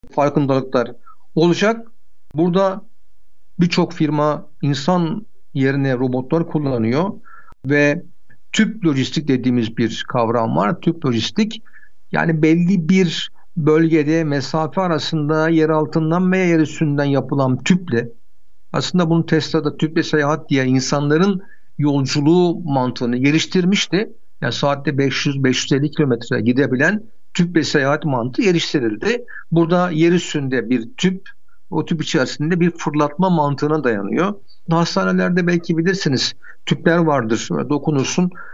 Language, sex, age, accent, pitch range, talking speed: Turkish, male, 60-79, native, 140-180 Hz, 105 wpm